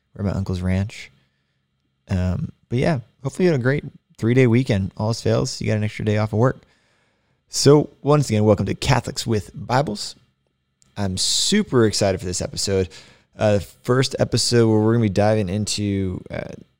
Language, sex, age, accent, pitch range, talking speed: English, male, 20-39, American, 90-115 Hz, 180 wpm